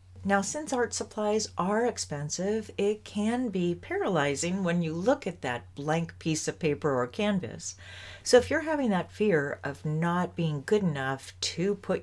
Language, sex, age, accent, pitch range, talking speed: English, female, 40-59, American, 145-210 Hz, 170 wpm